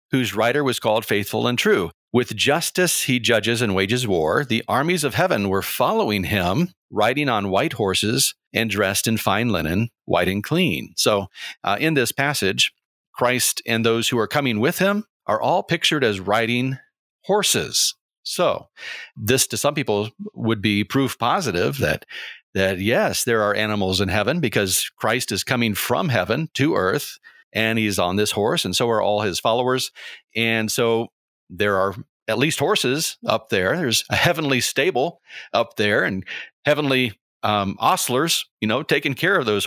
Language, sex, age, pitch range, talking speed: English, male, 40-59, 105-130 Hz, 170 wpm